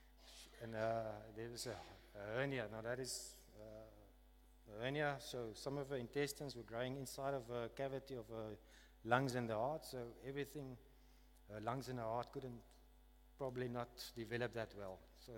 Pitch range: 110-135 Hz